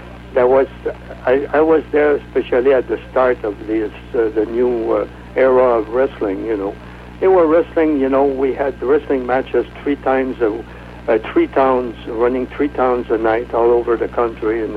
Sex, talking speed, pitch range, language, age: male, 185 wpm, 110-125 Hz, English, 70-89